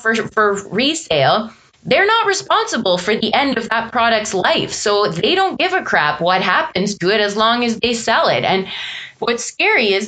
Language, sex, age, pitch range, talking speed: English, female, 20-39, 195-245 Hz, 195 wpm